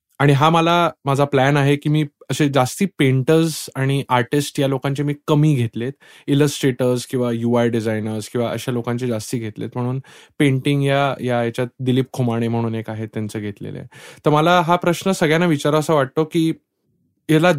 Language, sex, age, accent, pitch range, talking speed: English, male, 20-39, Indian, 120-150 Hz, 160 wpm